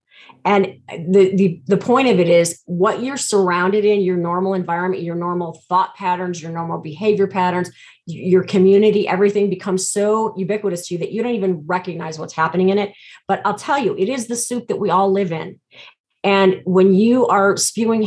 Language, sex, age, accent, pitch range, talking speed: English, female, 30-49, American, 175-205 Hz, 195 wpm